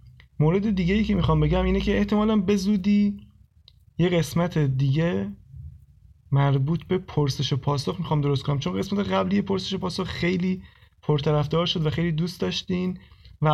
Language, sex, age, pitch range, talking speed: Persian, male, 30-49, 135-165 Hz, 150 wpm